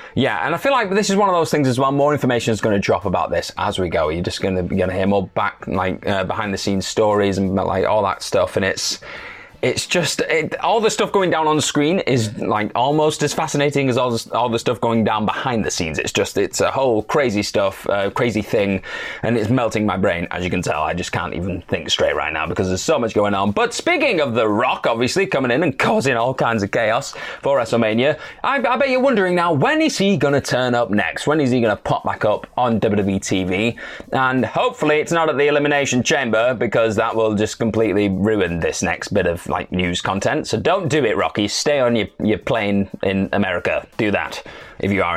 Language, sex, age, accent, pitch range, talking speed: English, male, 20-39, British, 100-145 Hz, 235 wpm